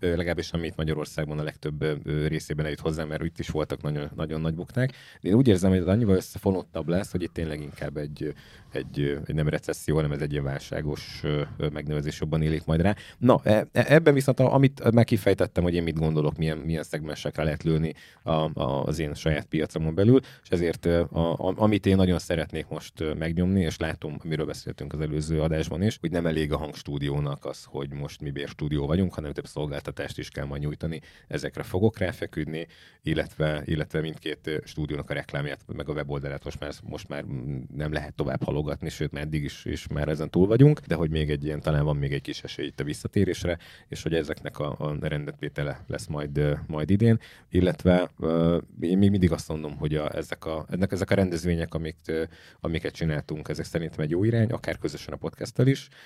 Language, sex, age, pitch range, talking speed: Hungarian, male, 30-49, 75-90 Hz, 190 wpm